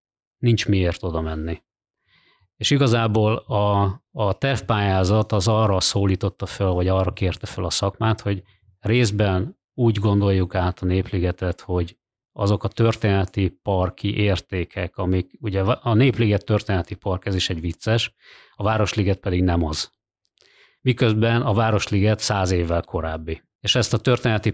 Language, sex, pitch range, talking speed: Hungarian, male, 90-110 Hz, 140 wpm